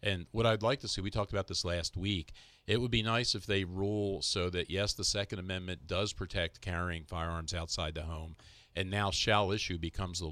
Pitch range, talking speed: 90-115 Hz, 220 wpm